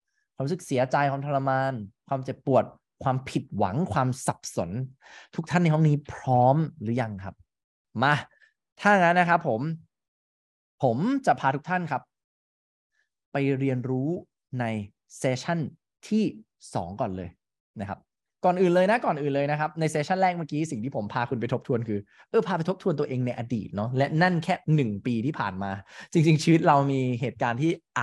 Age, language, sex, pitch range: 20-39, English, male, 110-155 Hz